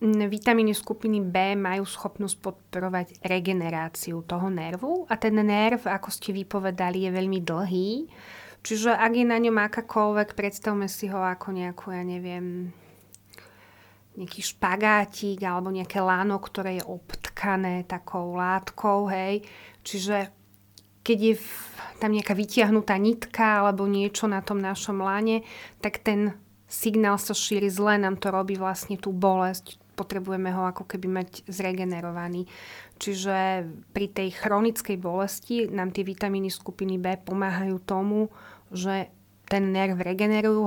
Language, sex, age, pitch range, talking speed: Slovak, female, 30-49, 185-205 Hz, 130 wpm